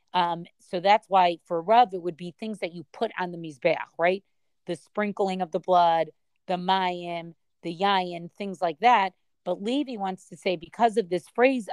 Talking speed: 195 wpm